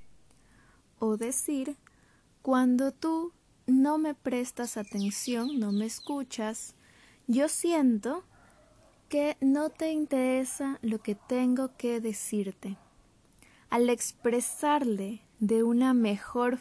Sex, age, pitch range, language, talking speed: female, 20-39, 220-275 Hz, Spanish, 100 wpm